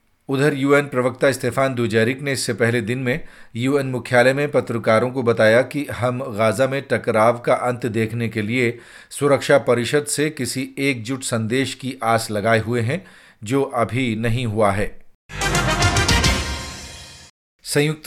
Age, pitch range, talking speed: 40-59, 115-135 Hz, 145 wpm